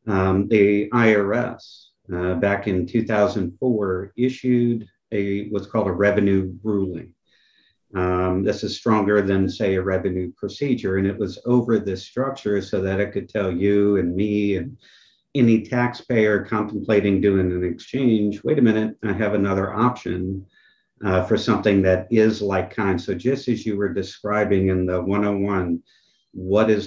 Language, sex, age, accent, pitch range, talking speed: English, male, 50-69, American, 95-110 Hz, 155 wpm